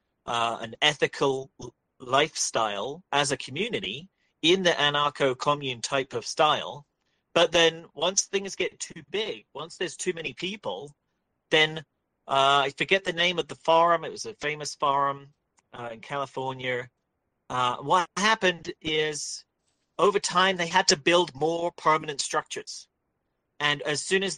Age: 40-59